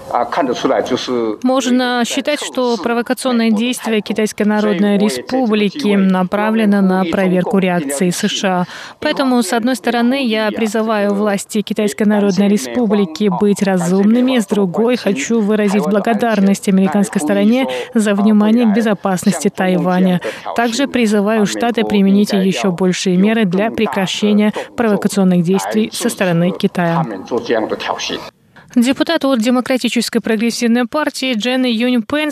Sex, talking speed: female, 110 wpm